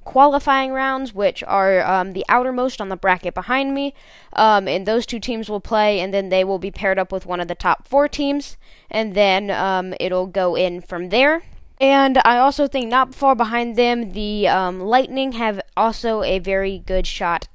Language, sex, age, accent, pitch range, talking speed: English, female, 10-29, American, 200-265 Hz, 200 wpm